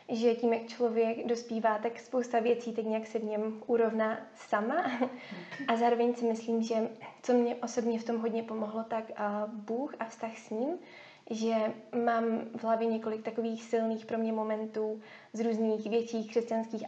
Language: Czech